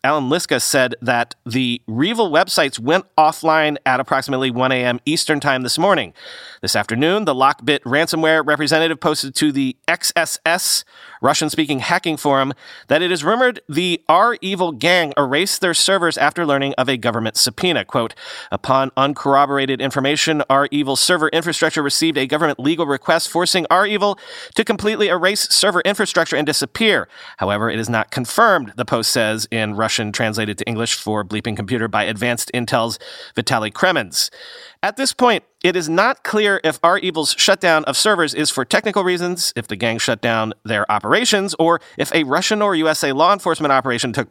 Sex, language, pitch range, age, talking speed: male, English, 120-170 Hz, 40-59, 165 wpm